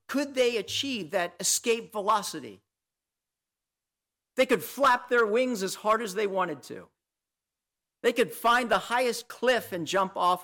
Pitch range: 160-245 Hz